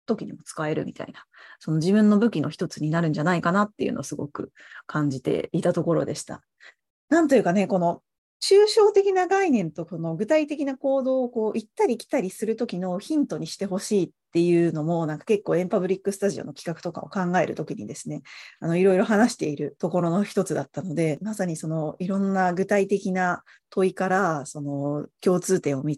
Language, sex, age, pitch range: Japanese, female, 30-49, 160-220 Hz